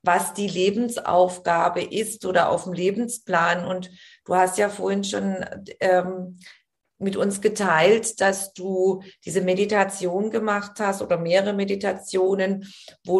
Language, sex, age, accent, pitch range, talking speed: German, female, 40-59, German, 180-200 Hz, 125 wpm